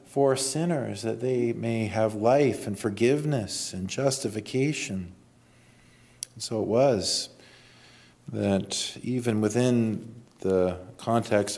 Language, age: English, 40-59